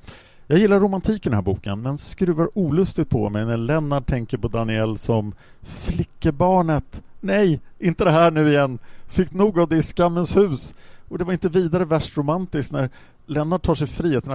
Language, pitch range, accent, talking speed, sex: Swedish, 110-165 Hz, Norwegian, 185 wpm, male